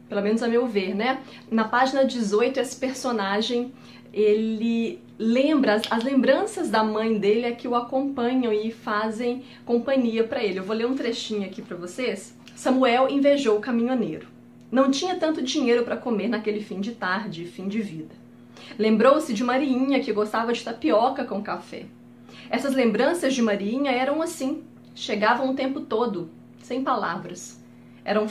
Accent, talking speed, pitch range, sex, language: Brazilian, 155 wpm, 210-265 Hz, female, Portuguese